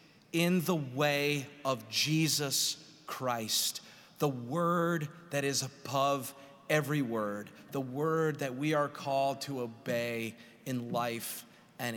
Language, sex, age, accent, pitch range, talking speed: English, male, 30-49, American, 130-165 Hz, 120 wpm